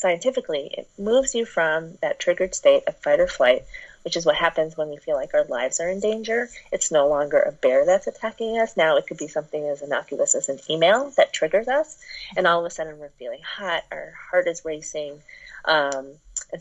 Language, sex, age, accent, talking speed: English, female, 30-49, American, 215 wpm